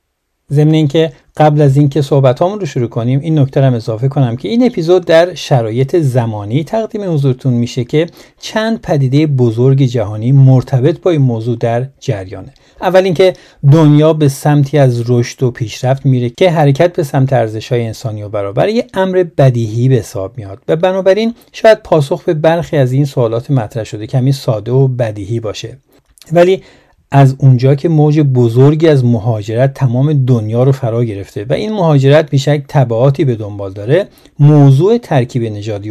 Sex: male